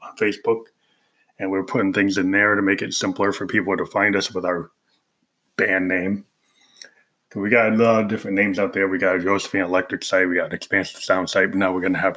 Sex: male